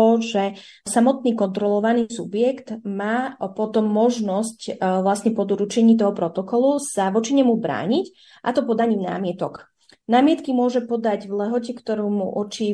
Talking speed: 130 wpm